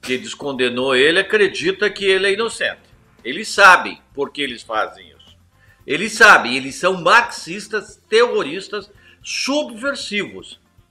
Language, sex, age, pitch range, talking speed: Portuguese, male, 50-69, 145-225 Hz, 120 wpm